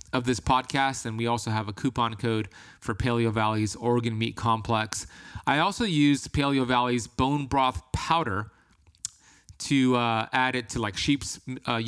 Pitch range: 110-130 Hz